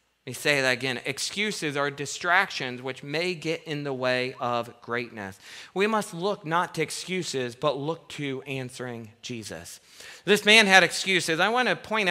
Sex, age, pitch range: male, 40-59, 125-190 Hz